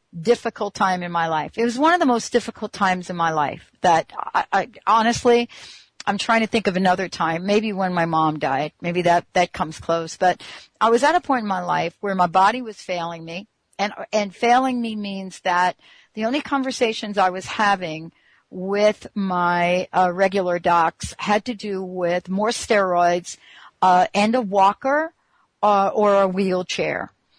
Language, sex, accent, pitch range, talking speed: English, female, American, 185-230 Hz, 180 wpm